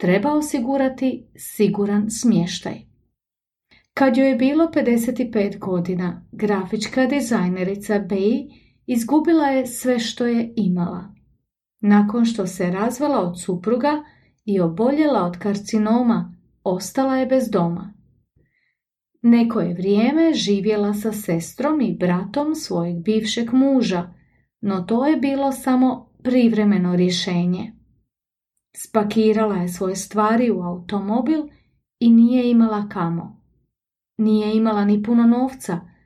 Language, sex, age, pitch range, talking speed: English, female, 30-49, 195-255 Hz, 110 wpm